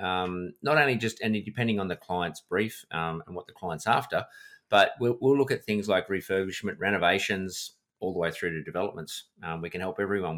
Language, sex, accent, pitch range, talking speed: English, male, Australian, 90-120 Hz, 210 wpm